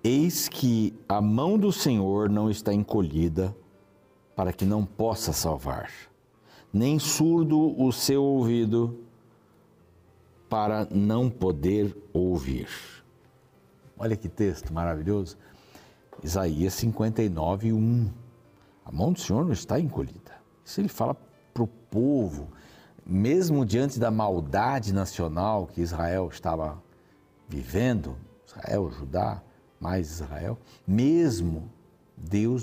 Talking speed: 105 wpm